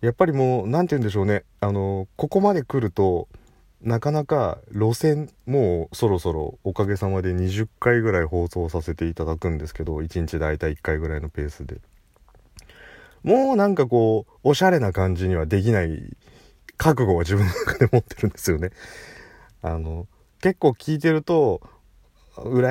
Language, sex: Japanese, male